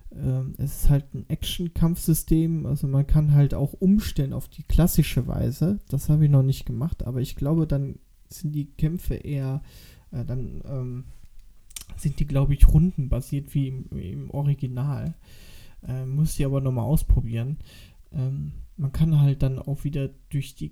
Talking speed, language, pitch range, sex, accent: 170 wpm, German, 130-155 Hz, male, German